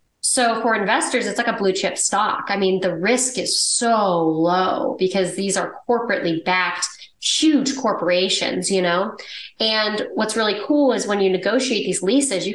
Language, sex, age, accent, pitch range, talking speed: English, female, 20-39, American, 185-220 Hz, 170 wpm